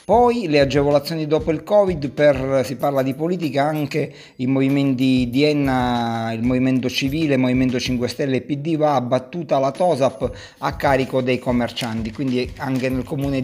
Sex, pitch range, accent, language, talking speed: male, 125-145 Hz, native, Italian, 165 wpm